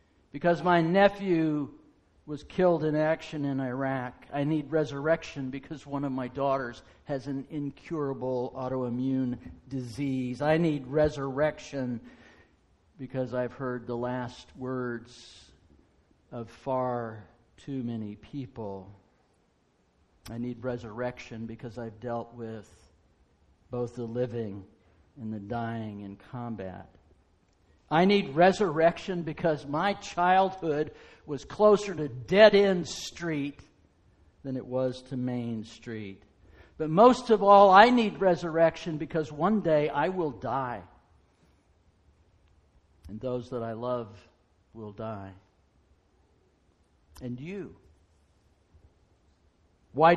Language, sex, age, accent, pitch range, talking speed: English, male, 50-69, American, 100-155 Hz, 110 wpm